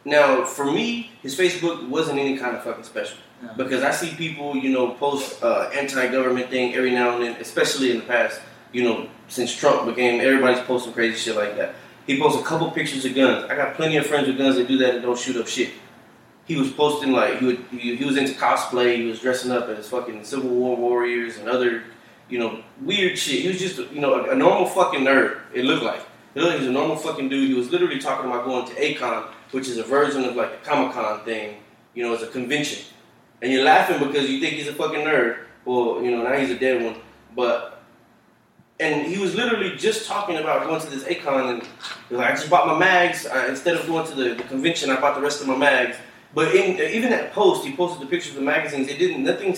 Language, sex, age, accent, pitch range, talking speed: English, male, 20-39, American, 120-160 Hz, 245 wpm